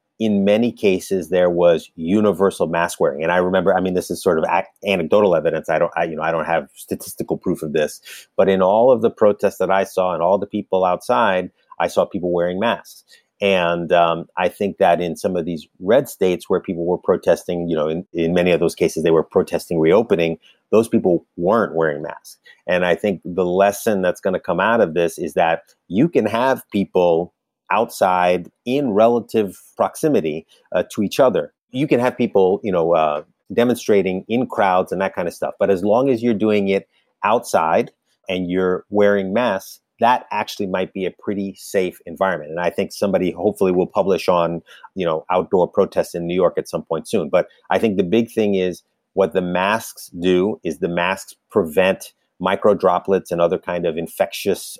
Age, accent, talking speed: 30-49, American, 200 wpm